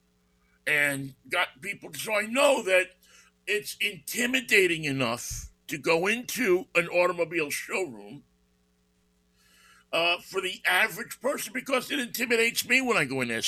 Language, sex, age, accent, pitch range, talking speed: English, male, 50-69, American, 120-170 Hz, 135 wpm